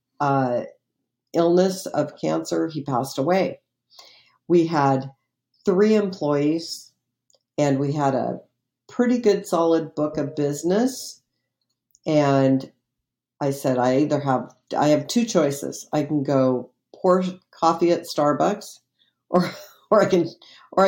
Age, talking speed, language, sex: 50-69, 125 wpm, English, female